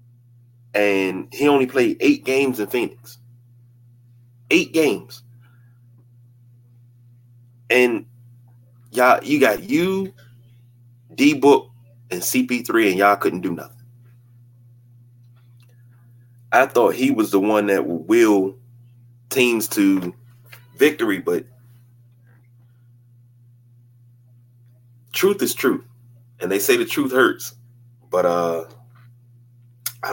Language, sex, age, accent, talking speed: English, male, 30-49, American, 100 wpm